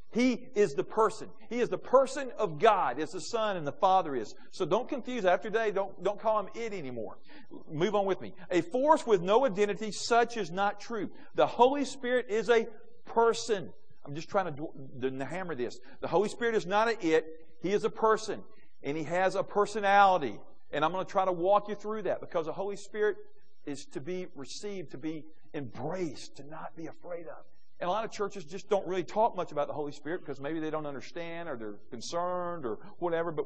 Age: 50-69